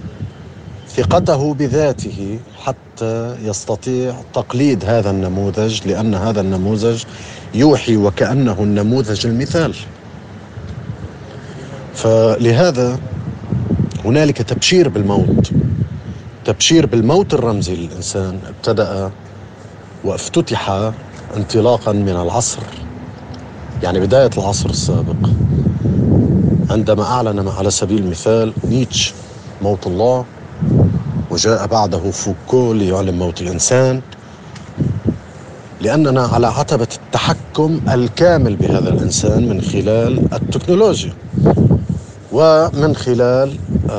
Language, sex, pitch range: Arabic, male, 105-125 Hz